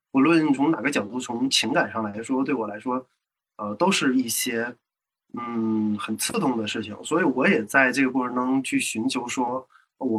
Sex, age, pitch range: male, 20-39, 110-160 Hz